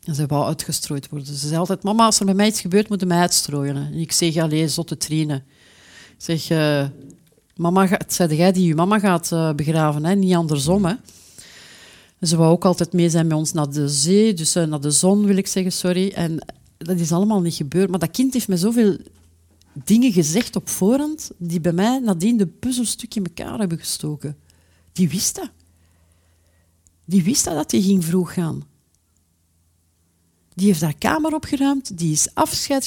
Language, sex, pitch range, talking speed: Dutch, female, 145-195 Hz, 195 wpm